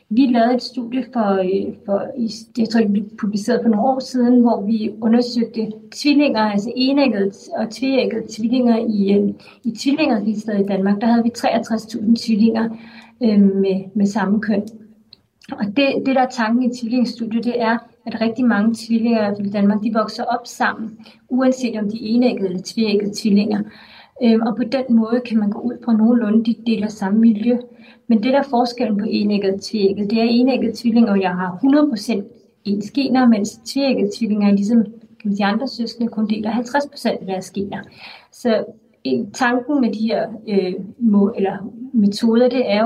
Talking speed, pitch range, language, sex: 175 wpm, 210-240 Hz, Danish, female